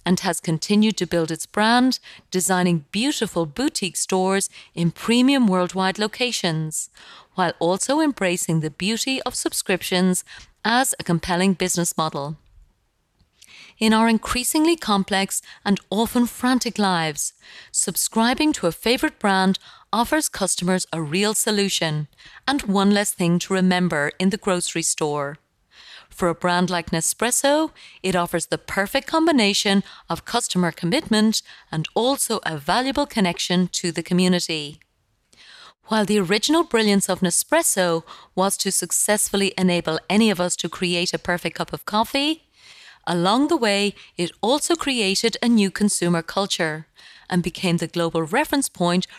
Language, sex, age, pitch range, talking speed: English, female, 30-49, 175-225 Hz, 135 wpm